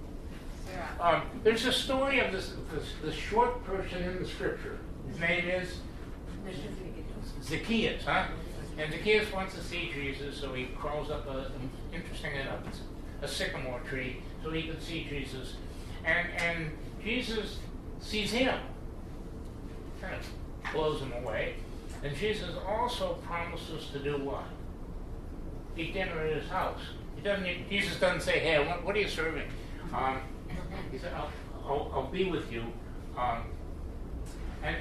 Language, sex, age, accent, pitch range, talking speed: English, male, 60-79, American, 130-180 Hz, 145 wpm